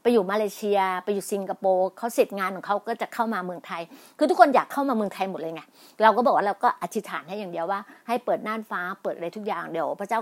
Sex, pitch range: female, 195-235 Hz